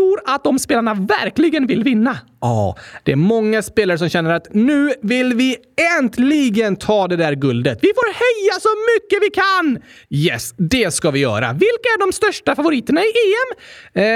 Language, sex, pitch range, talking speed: Swedish, male, 155-245 Hz, 180 wpm